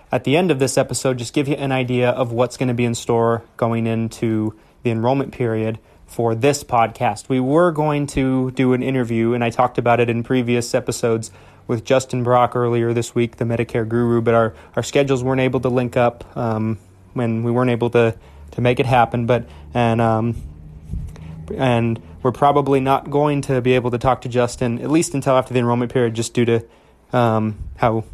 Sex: male